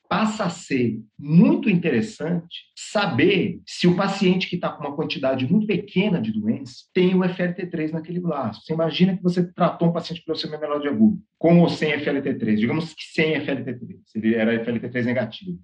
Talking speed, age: 185 wpm, 50-69